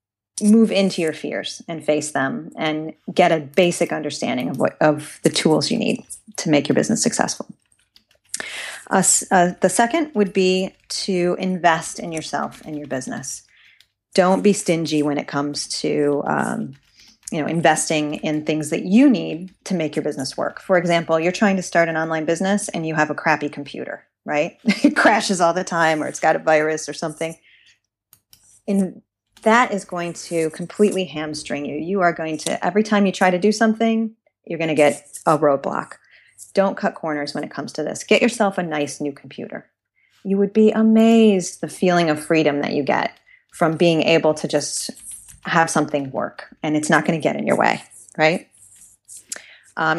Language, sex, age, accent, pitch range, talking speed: English, female, 30-49, American, 150-200 Hz, 185 wpm